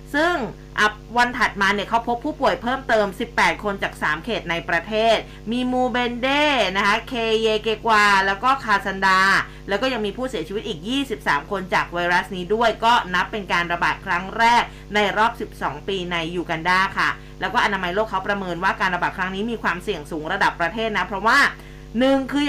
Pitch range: 175-225 Hz